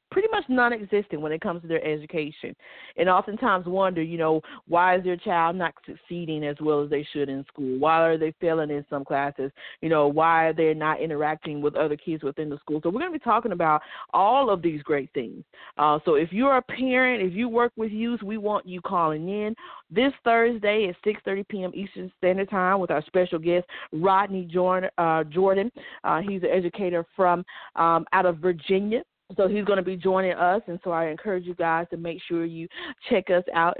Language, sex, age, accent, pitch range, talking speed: English, female, 40-59, American, 165-205 Hz, 210 wpm